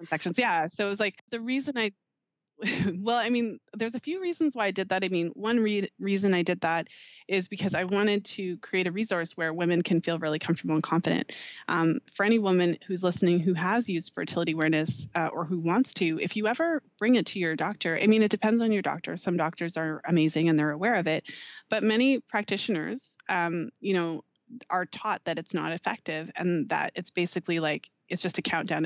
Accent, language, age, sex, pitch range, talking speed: American, English, 20-39, female, 165-205 Hz, 215 wpm